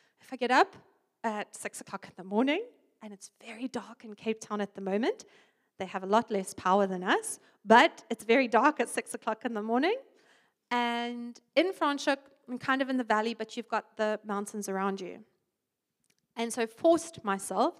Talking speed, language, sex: 195 wpm, English, female